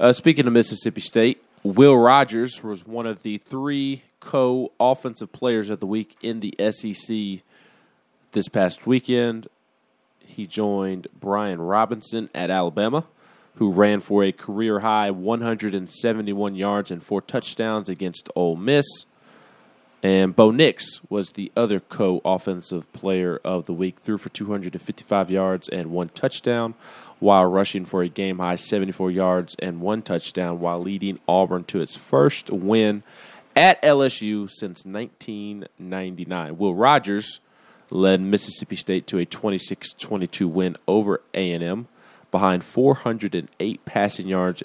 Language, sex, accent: English, male, American